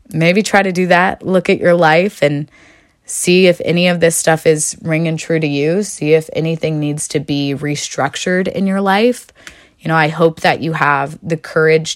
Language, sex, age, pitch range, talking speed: English, female, 20-39, 155-185 Hz, 200 wpm